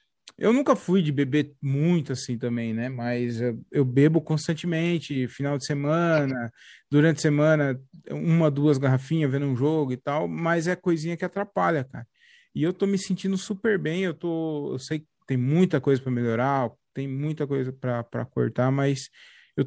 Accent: Brazilian